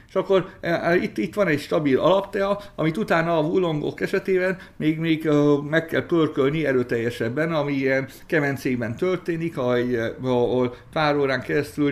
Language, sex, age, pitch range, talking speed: Hungarian, male, 60-79, 125-165 Hz, 140 wpm